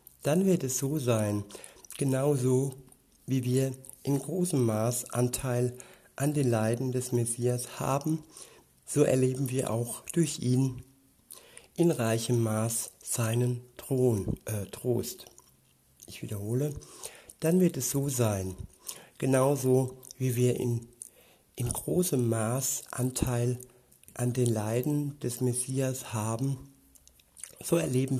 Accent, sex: German, male